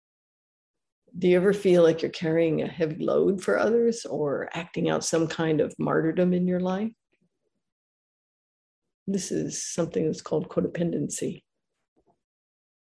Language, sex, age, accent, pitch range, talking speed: English, female, 50-69, American, 165-215 Hz, 130 wpm